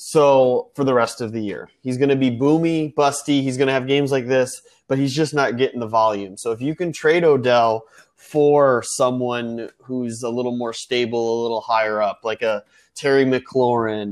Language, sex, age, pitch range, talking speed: English, male, 20-39, 115-135 Hz, 205 wpm